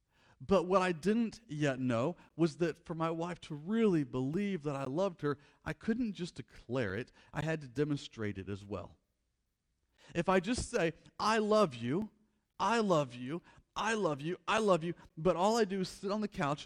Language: English